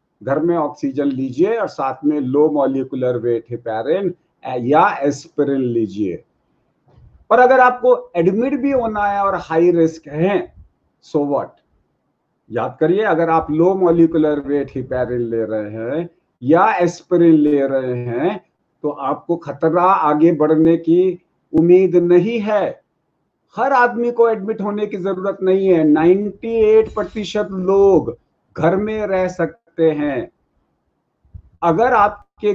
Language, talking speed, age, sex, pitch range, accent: Hindi, 105 wpm, 50-69, male, 160-210 Hz, native